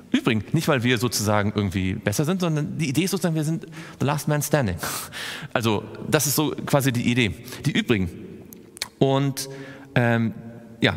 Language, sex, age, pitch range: German, male, 40-59, 110-140 Hz